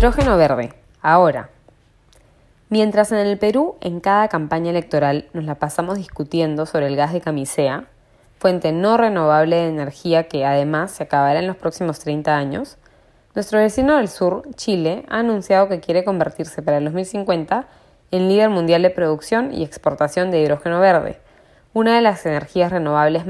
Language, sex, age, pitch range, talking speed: Spanish, female, 10-29, 155-195 Hz, 160 wpm